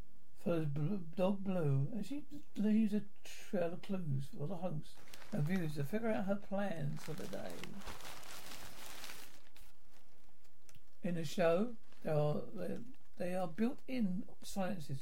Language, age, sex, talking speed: English, 60-79, male, 130 wpm